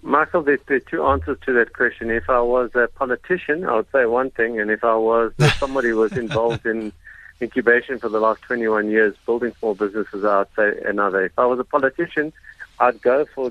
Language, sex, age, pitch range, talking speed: English, male, 50-69, 105-125 Hz, 215 wpm